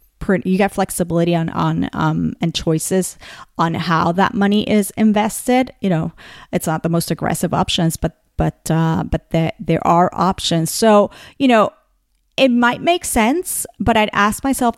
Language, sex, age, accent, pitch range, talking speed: English, female, 30-49, American, 170-220 Hz, 165 wpm